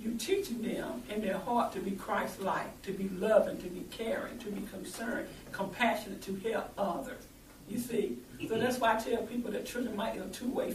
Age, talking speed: 60-79, 200 wpm